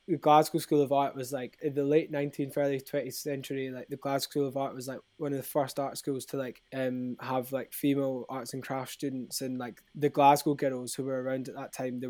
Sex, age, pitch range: male, 20-39, 130-145 Hz